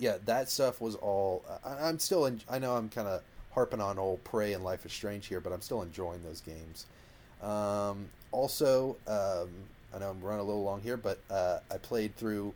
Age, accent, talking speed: 30-49, American, 210 wpm